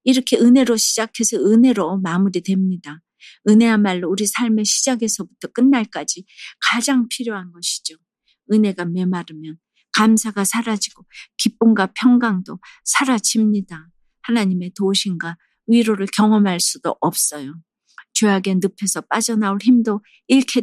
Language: Korean